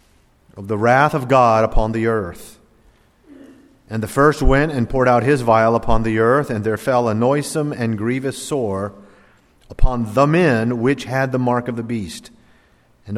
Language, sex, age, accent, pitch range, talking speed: English, male, 40-59, American, 100-135 Hz, 180 wpm